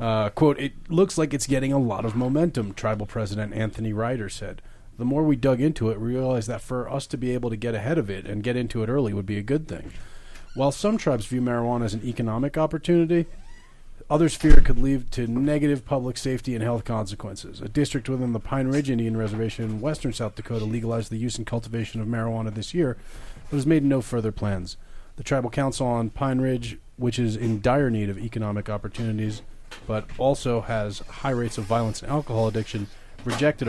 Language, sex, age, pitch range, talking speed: English, male, 30-49, 110-135 Hz, 210 wpm